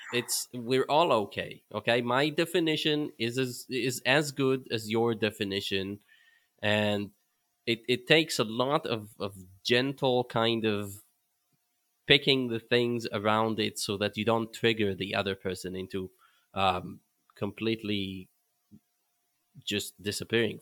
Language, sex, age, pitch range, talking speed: English, male, 20-39, 100-125 Hz, 130 wpm